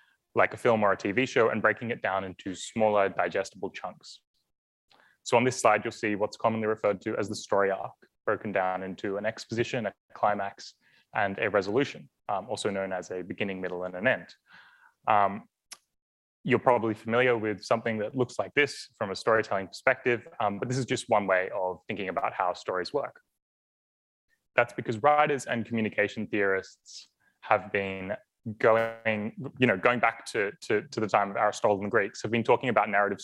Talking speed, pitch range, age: 190 wpm, 100-115 Hz, 20-39